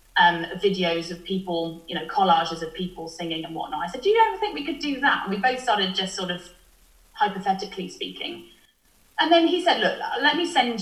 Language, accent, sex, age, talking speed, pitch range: English, British, female, 30-49, 215 wpm, 180-230 Hz